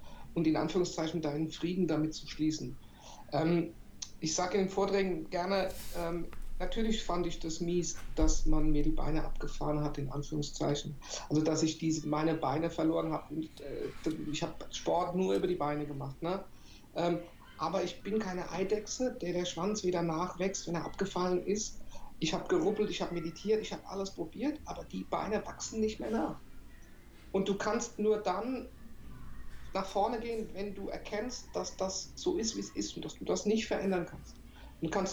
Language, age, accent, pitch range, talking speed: German, 50-69, German, 155-195 Hz, 180 wpm